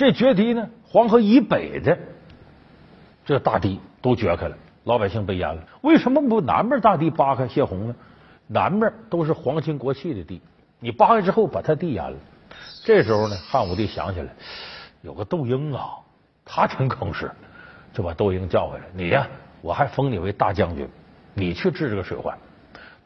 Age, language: 50-69, Chinese